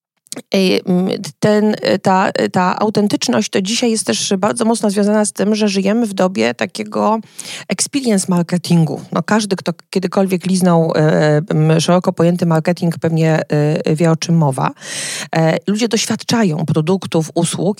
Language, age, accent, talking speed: Polish, 40-59, native, 135 wpm